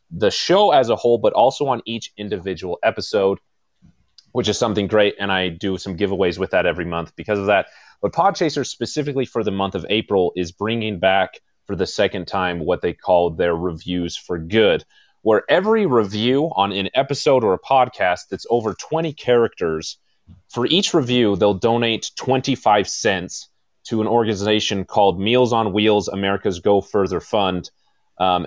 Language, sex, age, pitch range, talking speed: English, male, 30-49, 95-120 Hz, 170 wpm